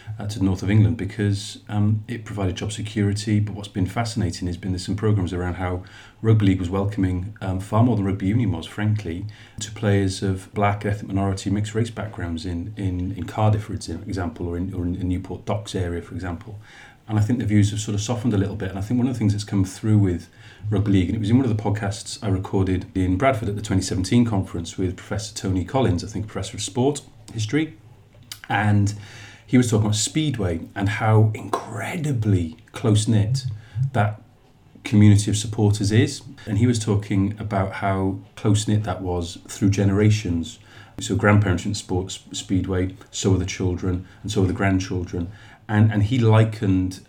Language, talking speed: English, 195 wpm